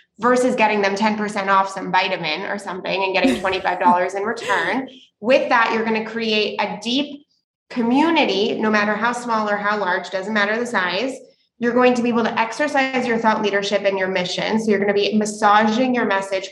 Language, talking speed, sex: English, 200 wpm, female